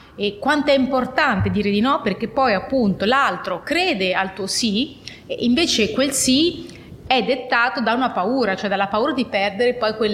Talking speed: 185 wpm